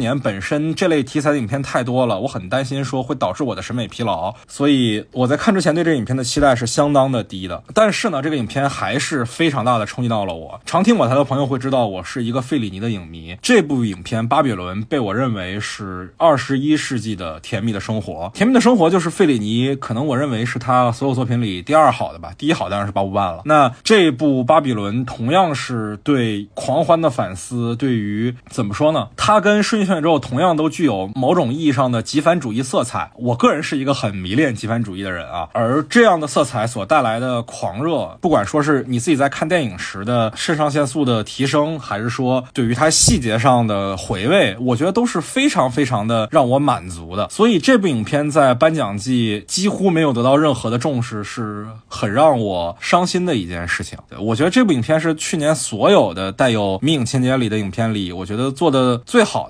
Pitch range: 110-150 Hz